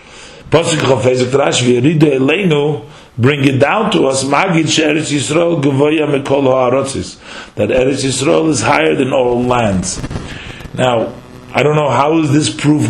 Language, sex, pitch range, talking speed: English, male, 120-150 Hz, 155 wpm